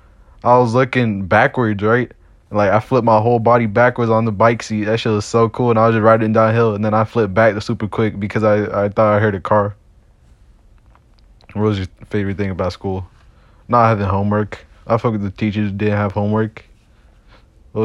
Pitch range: 95-110 Hz